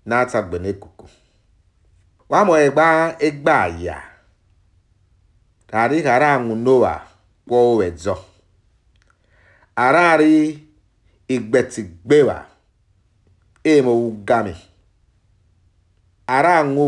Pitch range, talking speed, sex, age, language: 90-125 Hz, 70 wpm, male, 50-69, English